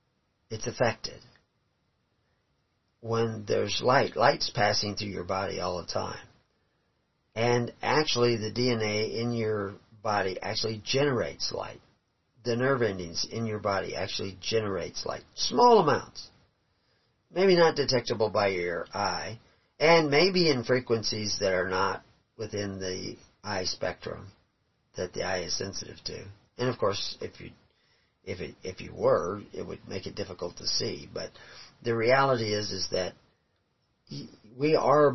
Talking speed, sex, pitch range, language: 140 wpm, male, 95-120 Hz, English